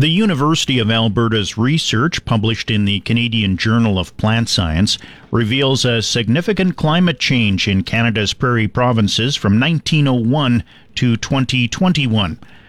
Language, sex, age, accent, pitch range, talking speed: English, male, 50-69, American, 100-130 Hz, 125 wpm